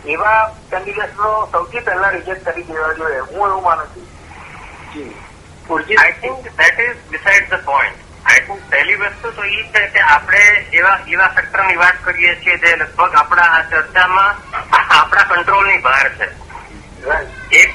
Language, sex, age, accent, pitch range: Gujarati, male, 50-69, native, 160-205 Hz